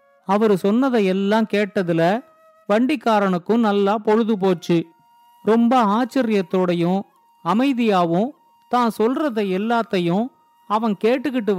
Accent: native